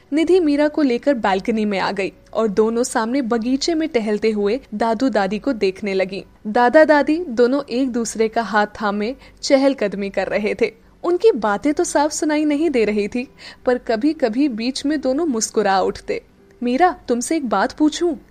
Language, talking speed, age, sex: Hindi, 175 wpm, 10-29, female